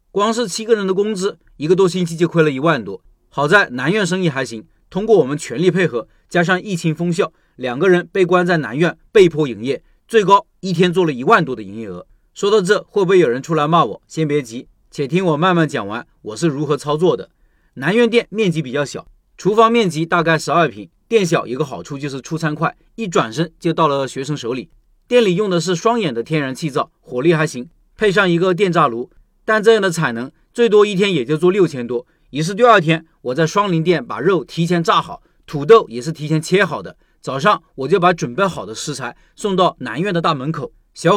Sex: male